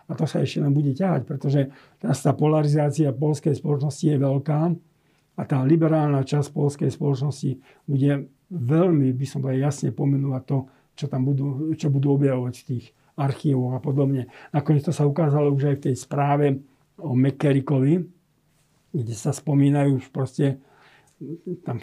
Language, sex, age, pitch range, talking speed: Slovak, male, 50-69, 140-160 Hz, 155 wpm